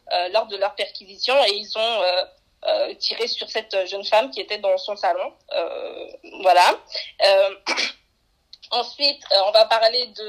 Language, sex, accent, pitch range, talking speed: French, female, French, 210-280 Hz, 170 wpm